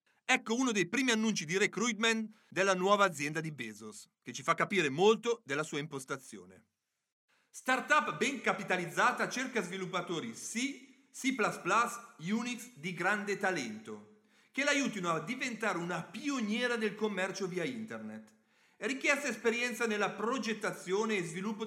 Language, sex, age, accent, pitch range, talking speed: Italian, male, 40-59, native, 175-235 Hz, 135 wpm